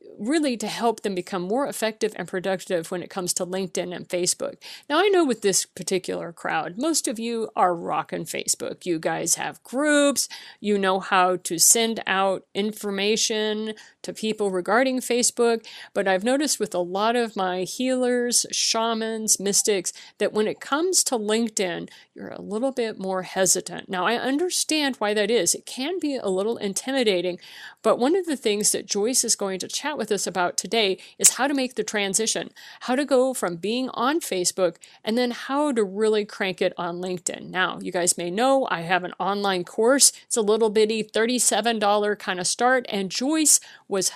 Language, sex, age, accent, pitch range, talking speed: English, female, 50-69, American, 190-250 Hz, 185 wpm